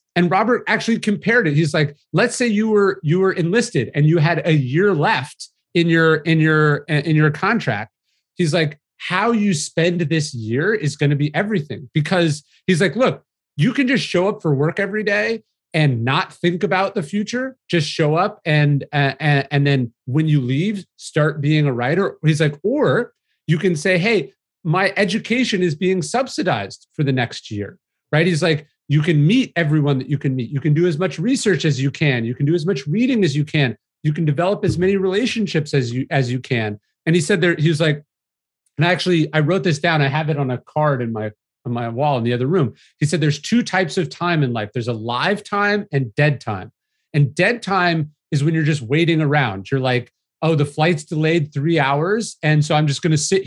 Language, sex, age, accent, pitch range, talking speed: English, male, 30-49, American, 140-185 Hz, 220 wpm